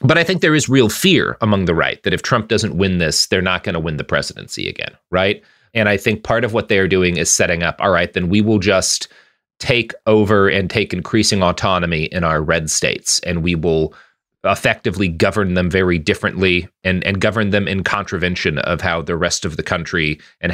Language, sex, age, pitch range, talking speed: English, male, 30-49, 90-110 Hz, 220 wpm